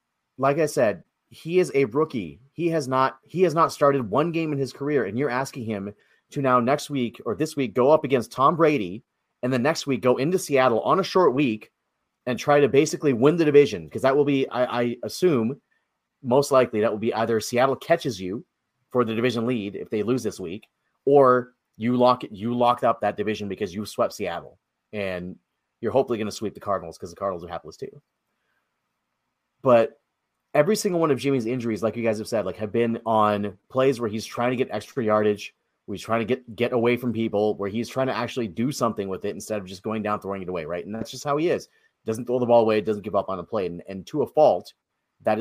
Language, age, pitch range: English, 30-49, 110-135 Hz